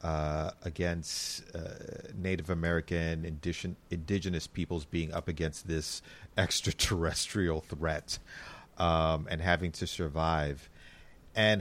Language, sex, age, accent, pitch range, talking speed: English, male, 40-59, American, 80-95 Hz, 105 wpm